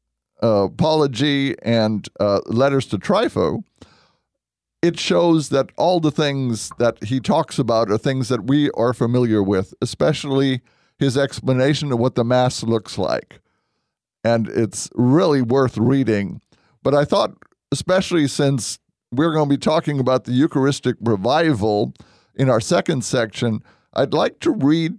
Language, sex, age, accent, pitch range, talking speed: English, male, 50-69, American, 115-150 Hz, 145 wpm